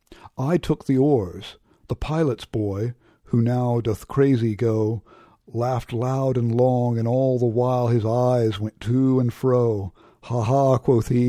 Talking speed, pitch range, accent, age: 160 wpm, 115-135 Hz, American, 60-79